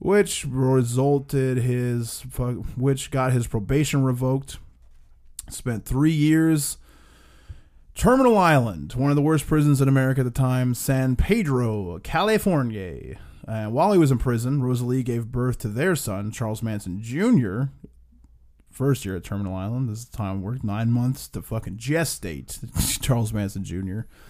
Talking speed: 150 wpm